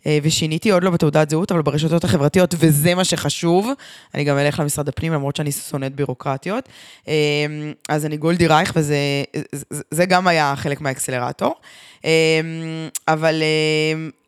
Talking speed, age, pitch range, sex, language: 130 wpm, 20-39, 165-215 Hz, female, English